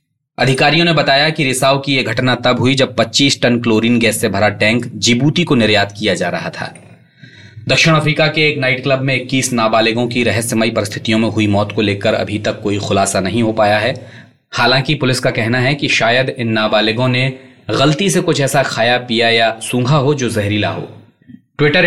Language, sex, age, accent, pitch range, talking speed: Hindi, male, 20-39, native, 110-135 Hz, 200 wpm